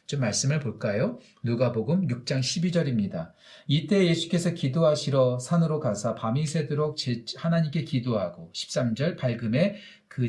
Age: 40-59